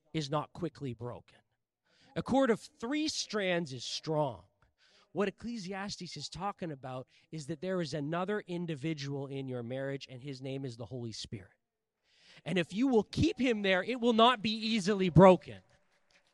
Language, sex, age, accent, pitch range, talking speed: English, male, 20-39, American, 145-200 Hz, 165 wpm